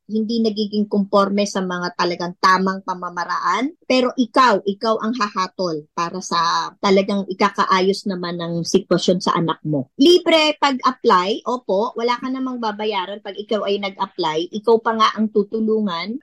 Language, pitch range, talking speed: Filipino, 190-245 Hz, 145 wpm